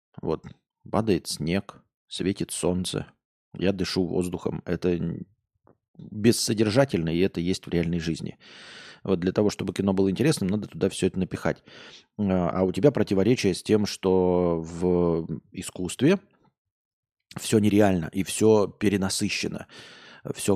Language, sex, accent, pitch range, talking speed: Russian, male, native, 90-105 Hz, 125 wpm